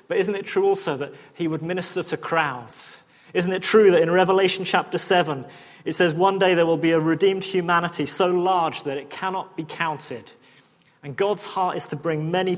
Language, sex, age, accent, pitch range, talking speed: English, male, 30-49, British, 175-220 Hz, 205 wpm